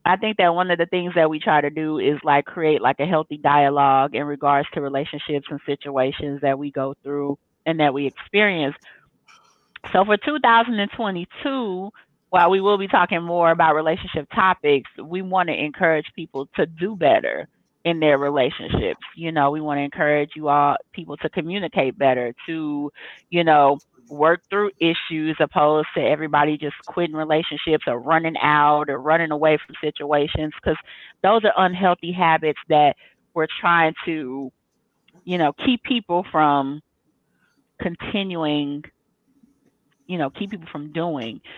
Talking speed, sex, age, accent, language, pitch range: 155 wpm, female, 30-49, American, English, 145-180 Hz